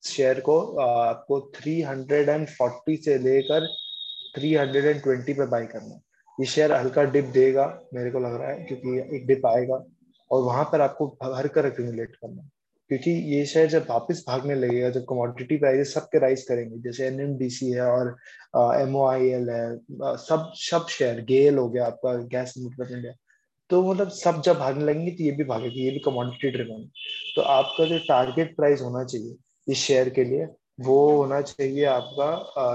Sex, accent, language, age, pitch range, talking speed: male, native, Hindi, 20-39, 125-155 Hz, 170 wpm